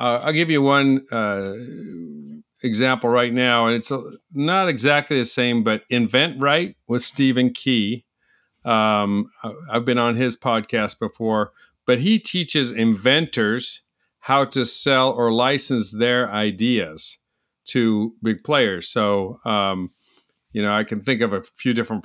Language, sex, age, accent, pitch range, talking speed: English, male, 50-69, American, 110-135 Hz, 145 wpm